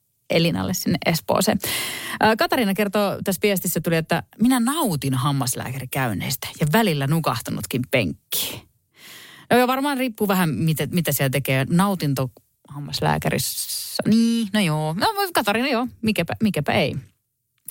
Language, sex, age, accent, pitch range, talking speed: Finnish, female, 30-49, native, 135-205 Hz, 120 wpm